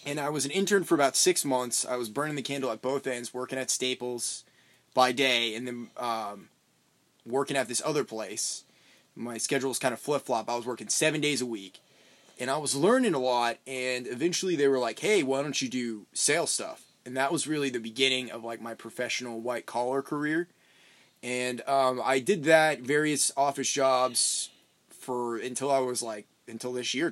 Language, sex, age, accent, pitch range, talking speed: English, male, 20-39, American, 120-145 Hz, 200 wpm